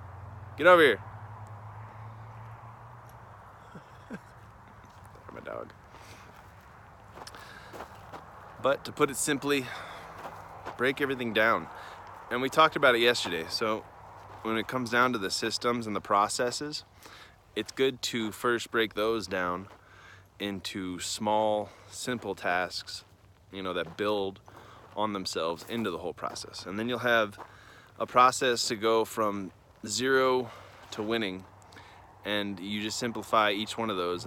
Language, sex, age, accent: English, male, 20-39, American